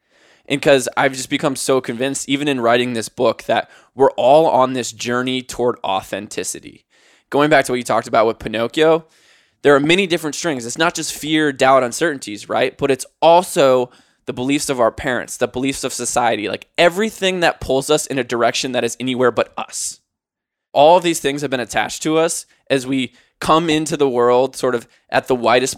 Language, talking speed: English, 200 wpm